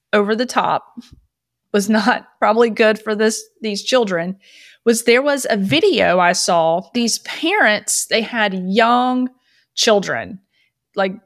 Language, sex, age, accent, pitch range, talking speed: English, female, 30-49, American, 190-240 Hz, 135 wpm